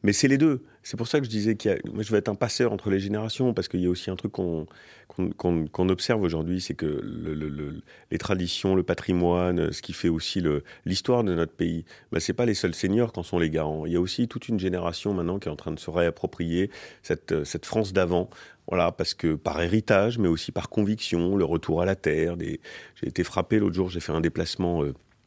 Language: French